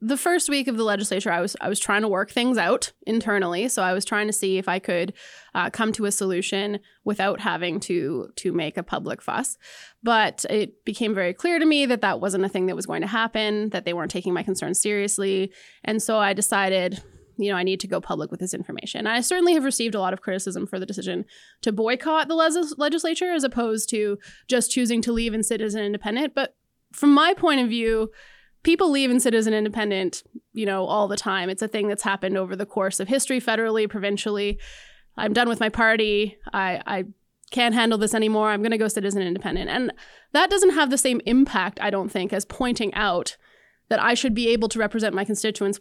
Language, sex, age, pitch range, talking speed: English, female, 20-39, 195-235 Hz, 230 wpm